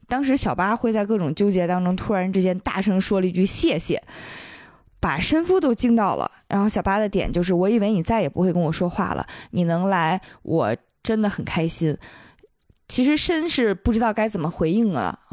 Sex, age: female, 20-39